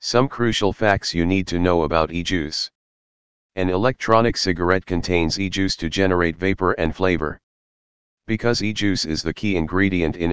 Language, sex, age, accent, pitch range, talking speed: English, male, 40-59, American, 85-95 Hz, 150 wpm